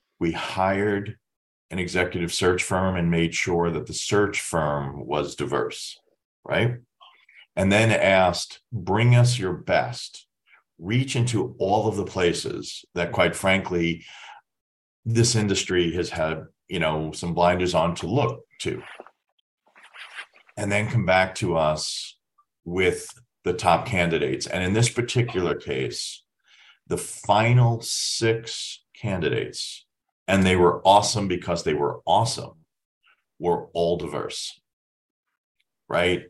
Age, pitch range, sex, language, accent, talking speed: 40-59, 85-105 Hz, male, English, American, 125 wpm